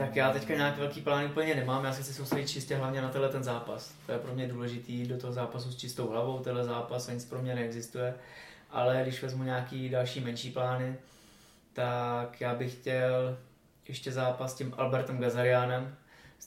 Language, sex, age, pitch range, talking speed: Czech, male, 20-39, 120-130 Hz, 185 wpm